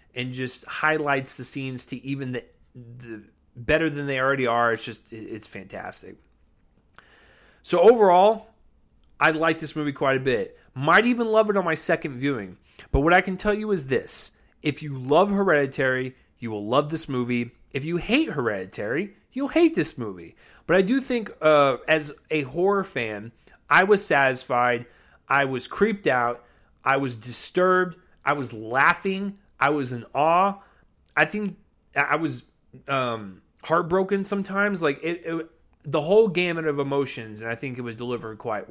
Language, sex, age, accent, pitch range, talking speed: English, male, 30-49, American, 125-175 Hz, 165 wpm